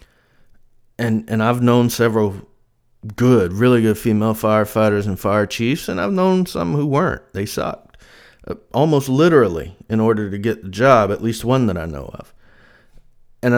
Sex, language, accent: male, English, American